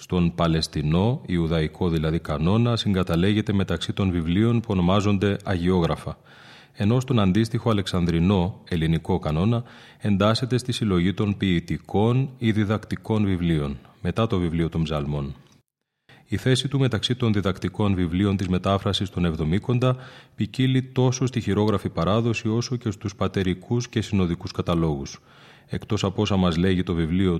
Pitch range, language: 90-115 Hz, Greek